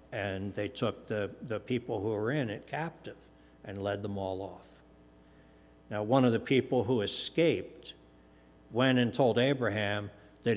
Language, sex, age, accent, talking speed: English, male, 60-79, American, 160 wpm